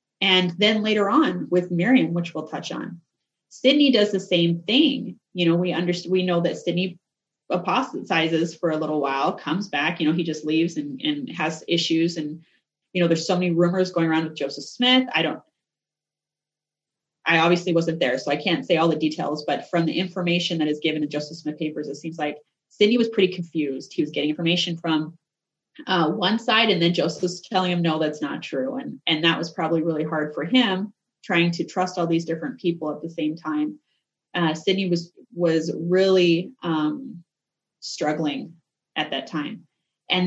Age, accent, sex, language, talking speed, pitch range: 30-49, American, female, English, 195 wpm, 155-185 Hz